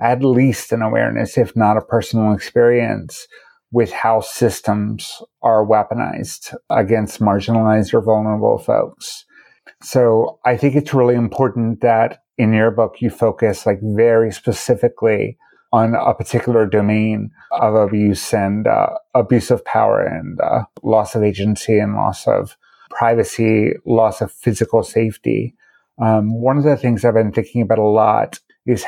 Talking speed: 145 wpm